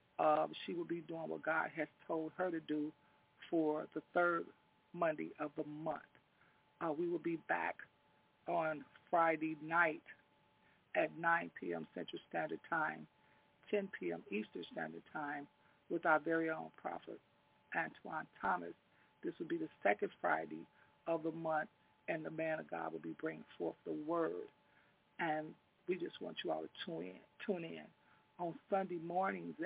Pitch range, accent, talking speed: 150-175 Hz, American, 155 wpm